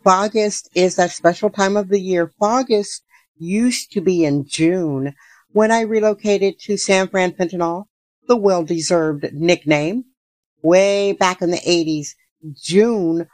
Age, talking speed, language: 50-69, 140 wpm, English